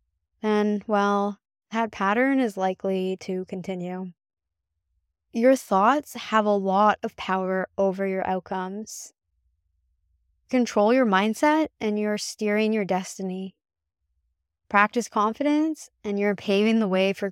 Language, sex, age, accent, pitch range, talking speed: English, female, 20-39, American, 180-220 Hz, 120 wpm